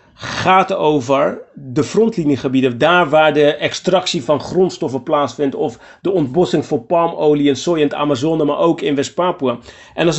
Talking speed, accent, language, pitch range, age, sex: 160 wpm, Dutch, Dutch, 140-175 Hz, 40-59, male